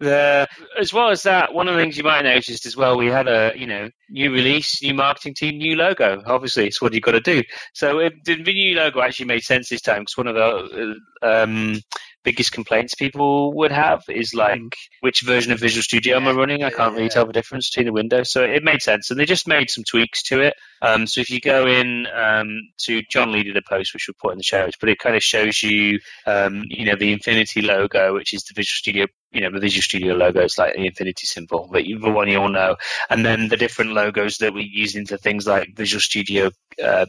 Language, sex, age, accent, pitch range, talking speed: English, male, 30-49, British, 105-130 Hz, 255 wpm